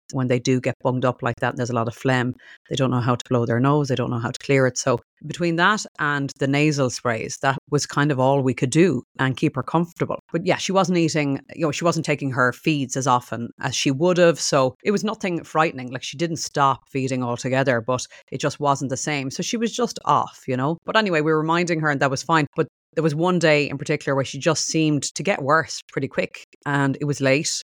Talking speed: 255 wpm